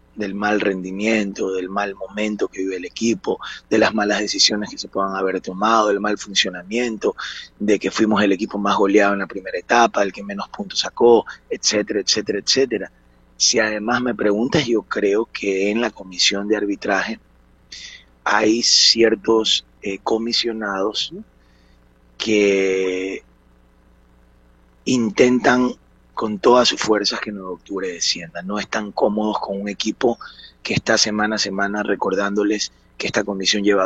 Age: 30-49